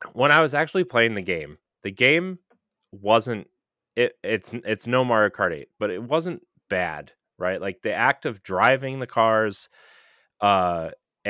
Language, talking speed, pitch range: English, 160 wpm, 95-120 Hz